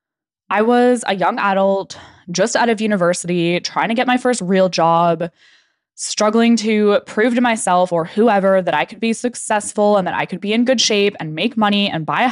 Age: 10-29